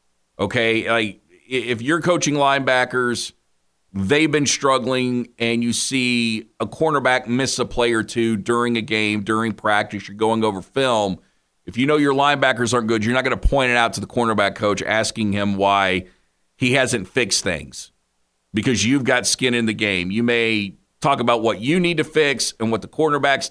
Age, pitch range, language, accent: 40-59, 110-160 Hz, English, American